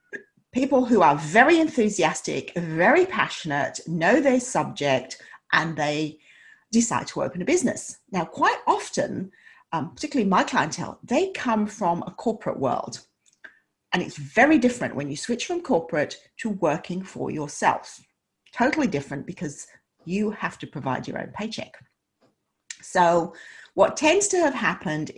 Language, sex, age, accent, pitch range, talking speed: English, female, 40-59, British, 165-240 Hz, 140 wpm